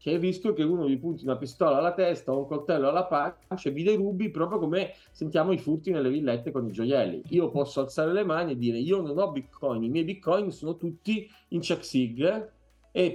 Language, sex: Italian, male